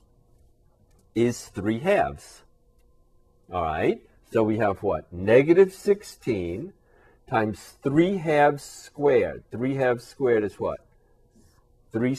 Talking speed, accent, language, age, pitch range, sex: 105 wpm, American, English, 50-69, 95-130 Hz, male